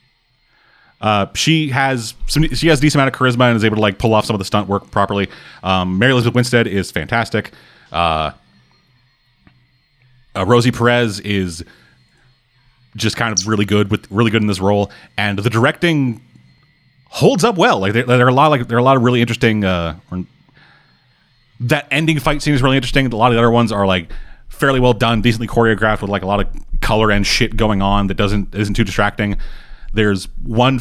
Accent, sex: American, male